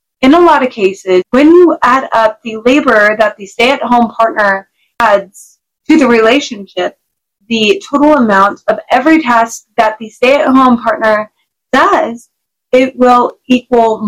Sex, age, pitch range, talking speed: female, 20-39, 215-270 Hz, 140 wpm